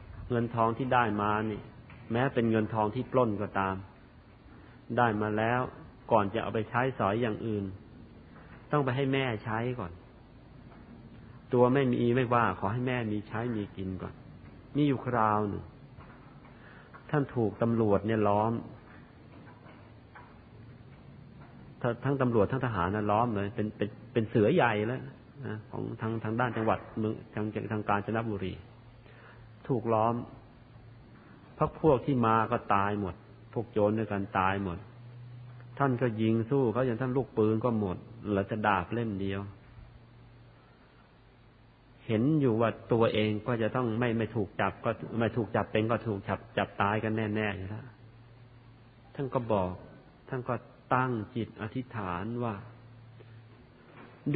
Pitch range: 105-125 Hz